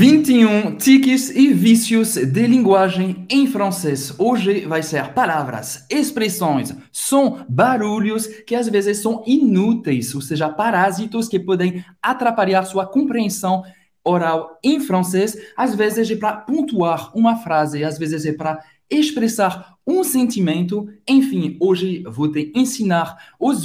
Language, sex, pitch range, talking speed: Portuguese, male, 165-225 Hz, 130 wpm